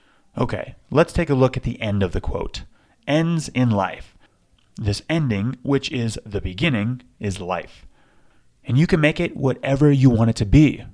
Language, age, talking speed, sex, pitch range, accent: English, 30-49, 180 wpm, male, 105-140 Hz, American